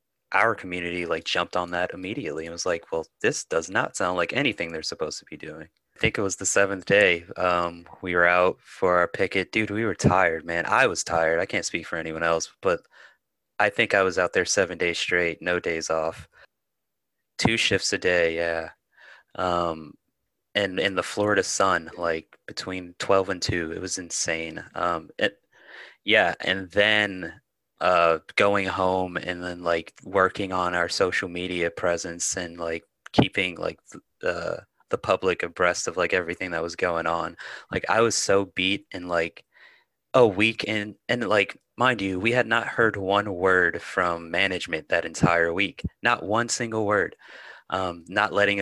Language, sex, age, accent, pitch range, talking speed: English, male, 20-39, American, 85-100 Hz, 180 wpm